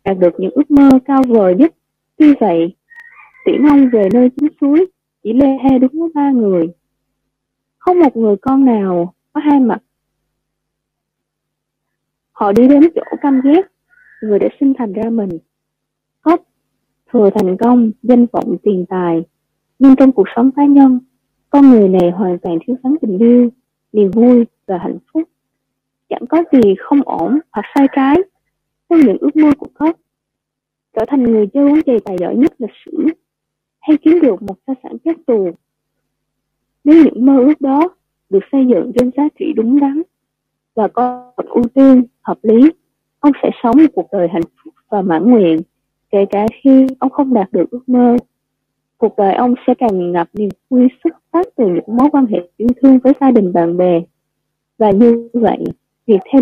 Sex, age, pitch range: female, 20-39, 195-280 Hz